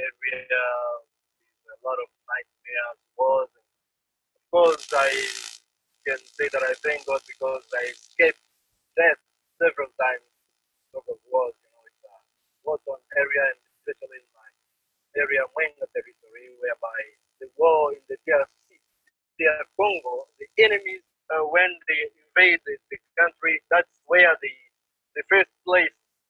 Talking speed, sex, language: 145 wpm, male, English